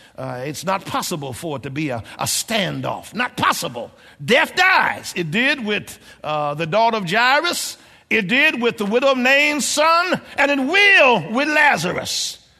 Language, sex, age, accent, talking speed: English, male, 60-79, American, 170 wpm